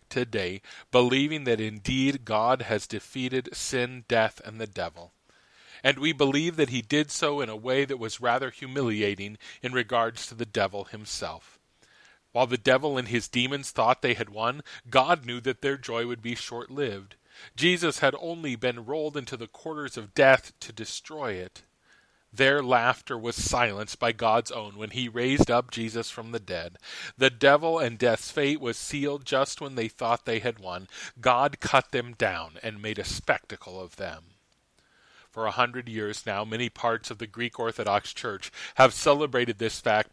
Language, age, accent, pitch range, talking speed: English, 40-59, American, 110-140 Hz, 175 wpm